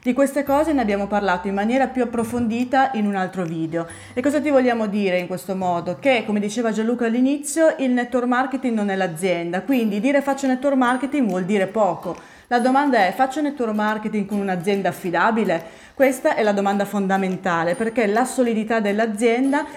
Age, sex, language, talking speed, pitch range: 30-49, female, Italian, 180 wpm, 185-255 Hz